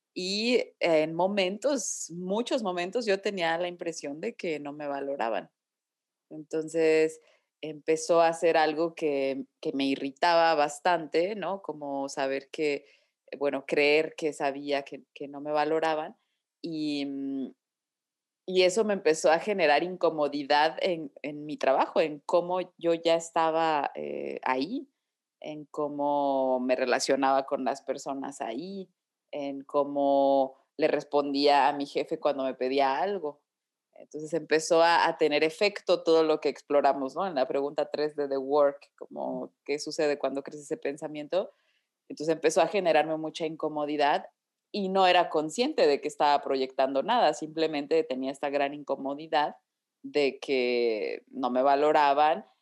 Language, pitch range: Spanish, 140-170 Hz